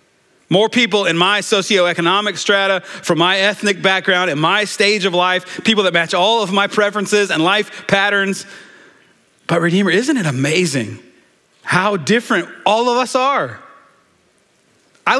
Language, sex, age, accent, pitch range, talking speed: English, male, 30-49, American, 180-235 Hz, 145 wpm